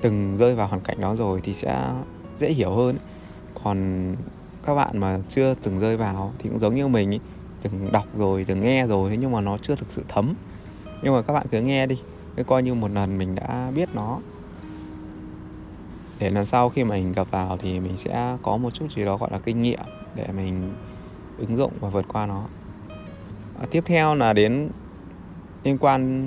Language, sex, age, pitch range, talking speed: Vietnamese, male, 20-39, 95-120 Hz, 205 wpm